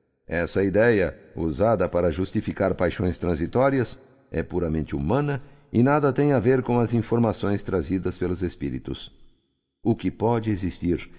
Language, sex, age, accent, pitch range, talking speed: Portuguese, male, 50-69, Brazilian, 85-120 Hz, 135 wpm